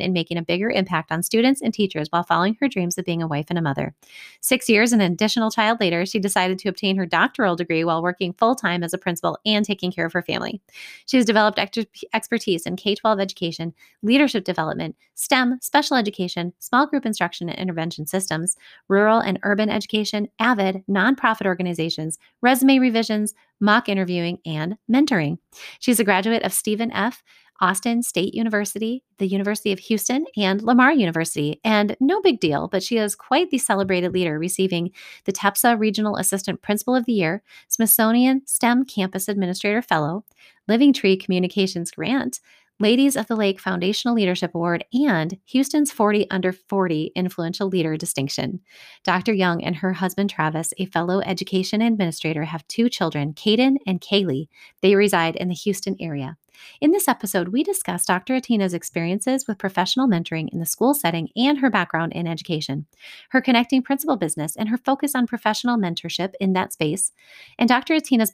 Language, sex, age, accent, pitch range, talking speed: English, female, 30-49, American, 175-230 Hz, 170 wpm